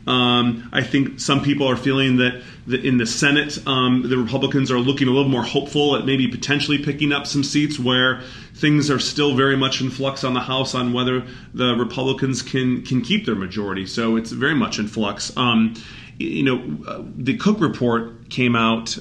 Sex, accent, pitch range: male, American, 115-130 Hz